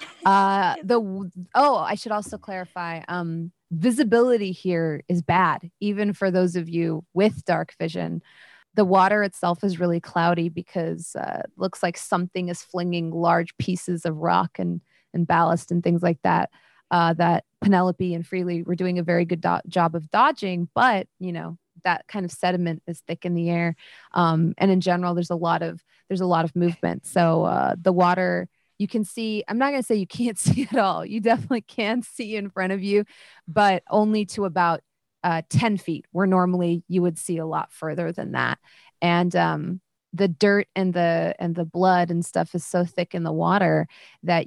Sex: female